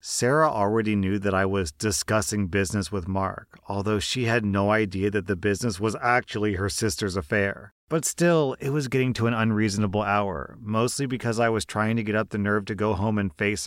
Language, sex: English, male